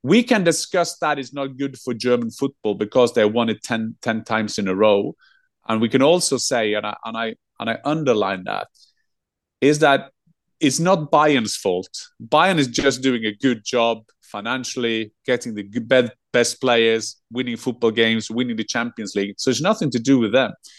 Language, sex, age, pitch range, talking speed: English, male, 30-49, 120-150 Hz, 190 wpm